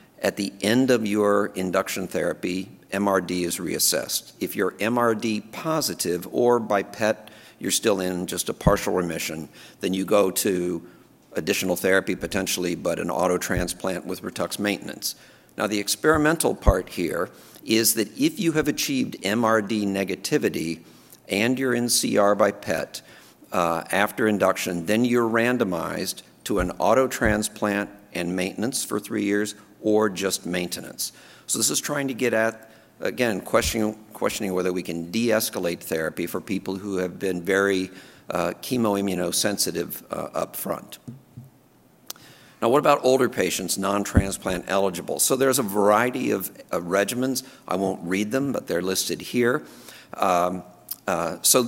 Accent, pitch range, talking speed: American, 90-115 Hz, 145 wpm